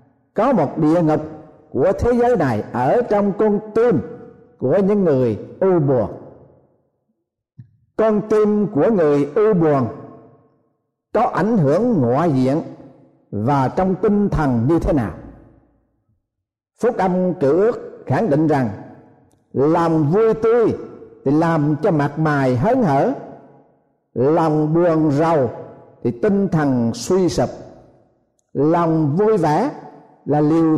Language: Vietnamese